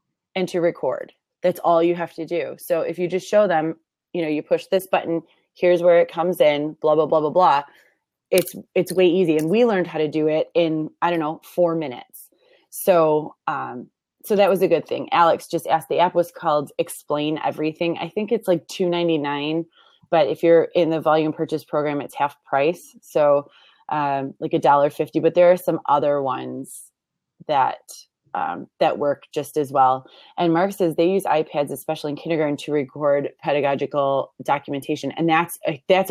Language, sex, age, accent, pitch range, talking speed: English, female, 20-39, American, 145-175 Hz, 195 wpm